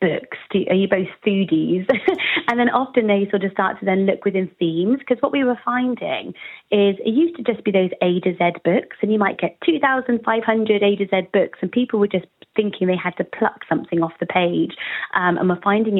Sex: female